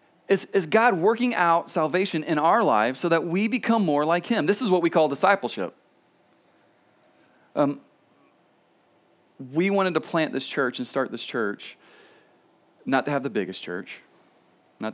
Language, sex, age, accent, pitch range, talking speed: English, male, 30-49, American, 140-195 Hz, 160 wpm